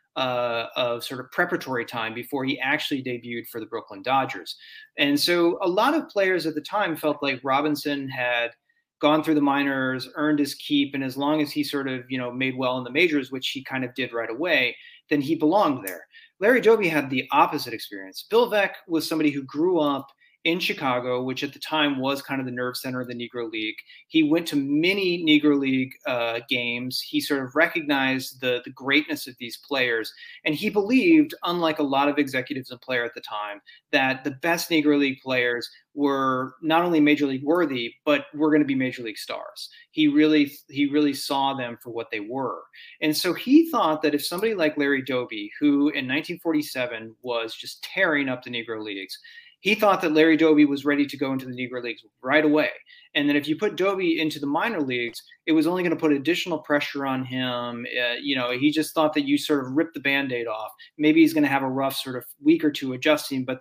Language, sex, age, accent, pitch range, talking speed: English, male, 30-49, American, 130-165 Hz, 220 wpm